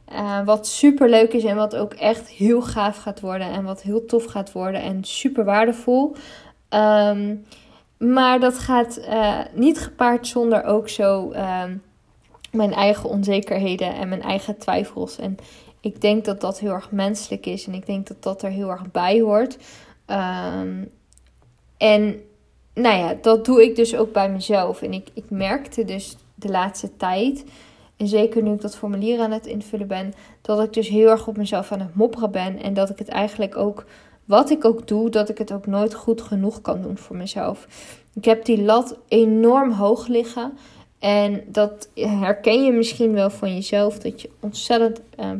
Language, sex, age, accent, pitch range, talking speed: Dutch, female, 20-39, Dutch, 200-230 Hz, 180 wpm